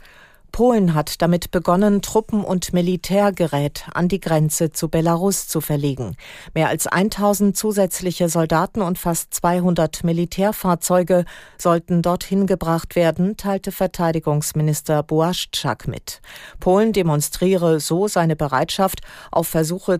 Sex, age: female, 40-59